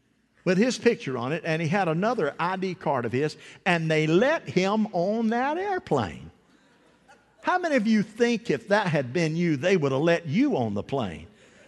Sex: male